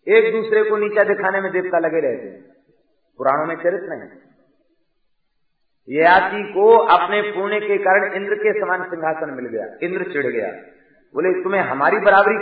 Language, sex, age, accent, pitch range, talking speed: Hindi, male, 50-69, native, 155-215 Hz, 165 wpm